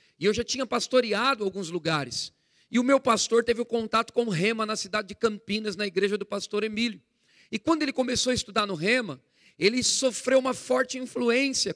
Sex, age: male, 40-59